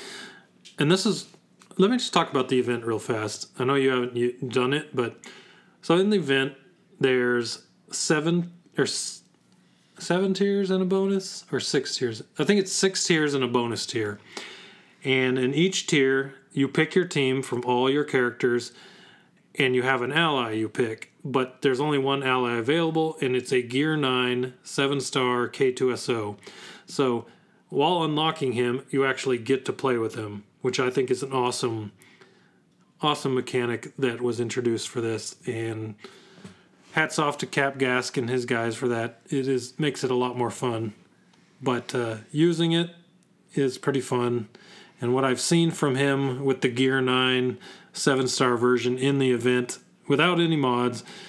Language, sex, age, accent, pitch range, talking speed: English, male, 30-49, American, 125-155 Hz, 170 wpm